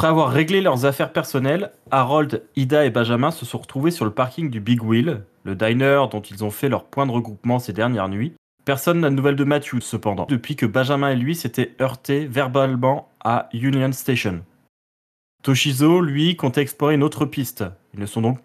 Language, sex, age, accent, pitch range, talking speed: French, male, 20-39, French, 110-135 Hz, 200 wpm